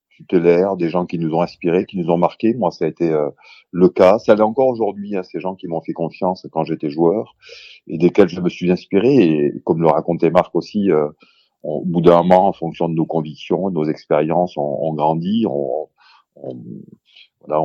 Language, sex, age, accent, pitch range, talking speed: French, male, 40-59, French, 75-95 Hz, 215 wpm